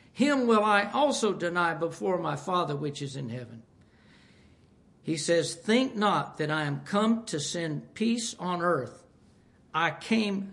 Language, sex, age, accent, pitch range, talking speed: English, male, 60-79, American, 175-235 Hz, 155 wpm